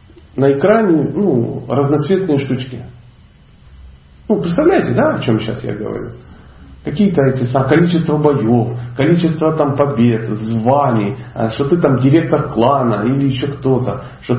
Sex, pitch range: male, 120-165 Hz